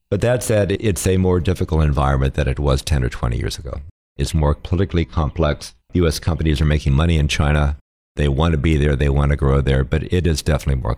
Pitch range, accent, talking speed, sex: 70-90 Hz, American, 230 wpm, male